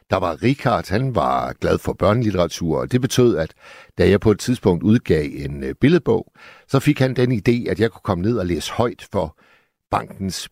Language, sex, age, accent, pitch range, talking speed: Danish, male, 60-79, native, 95-130 Hz, 200 wpm